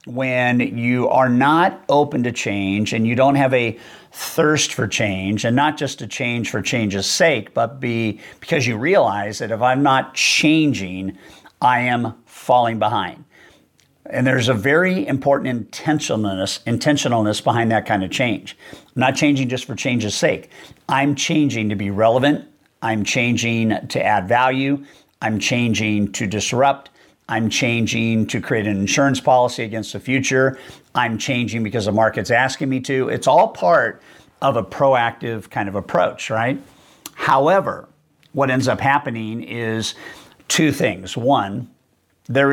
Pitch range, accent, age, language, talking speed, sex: 110-135 Hz, American, 50-69, English, 150 wpm, male